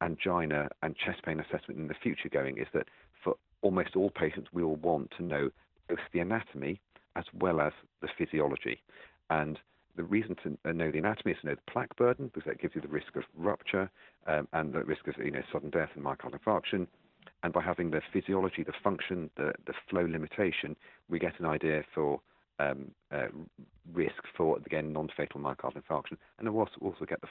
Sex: male